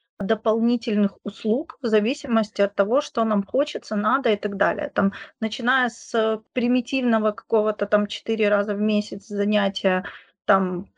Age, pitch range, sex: 20-39, 210-255 Hz, female